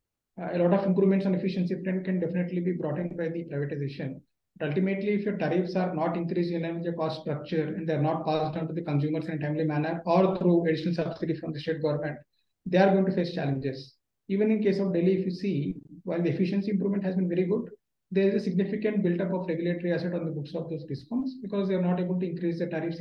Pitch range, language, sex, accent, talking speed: 170-200 Hz, English, male, Indian, 245 wpm